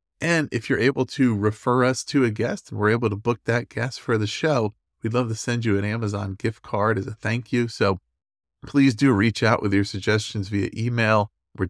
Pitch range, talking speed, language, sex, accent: 100-125 Hz, 225 wpm, English, male, American